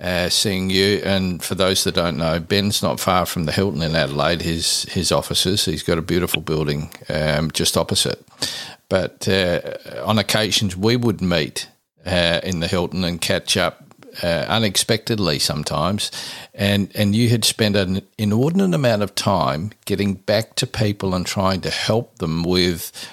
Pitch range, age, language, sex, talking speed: 95-115 Hz, 50-69, English, male, 170 wpm